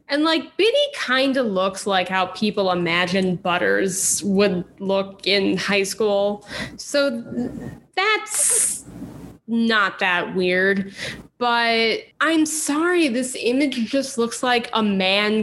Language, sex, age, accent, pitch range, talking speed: English, female, 20-39, American, 195-270 Hz, 120 wpm